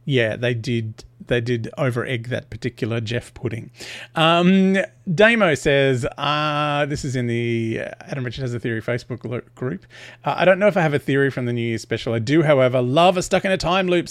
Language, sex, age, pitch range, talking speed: English, male, 40-59, 125-165 Hz, 190 wpm